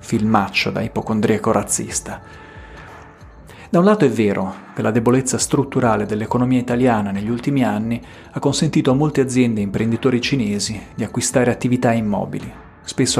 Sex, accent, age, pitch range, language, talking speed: male, native, 40-59, 115-140 Hz, Italian, 140 wpm